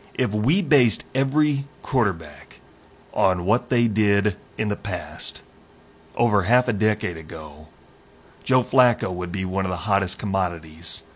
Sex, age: male, 30-49